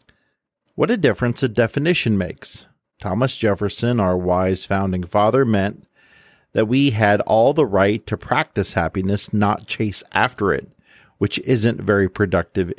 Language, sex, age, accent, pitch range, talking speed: English, male, 50-69, American, 90-110 Hz, 140 wpm